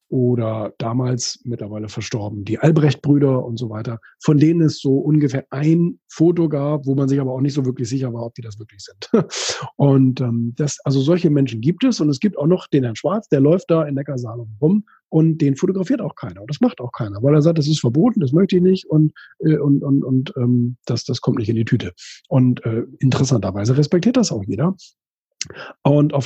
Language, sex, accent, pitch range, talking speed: German, male, German, 120-155 Hz, 220 wpm